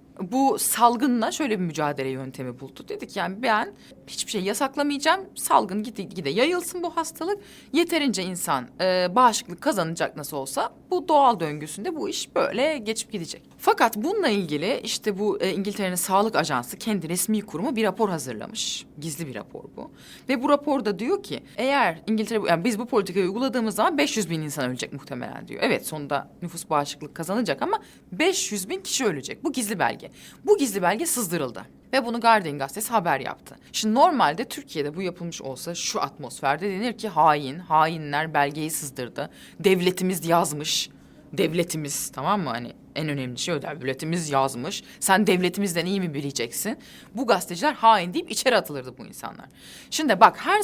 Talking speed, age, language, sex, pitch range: 160 wpm, 30-49, Turkish, female, 155-245 Hz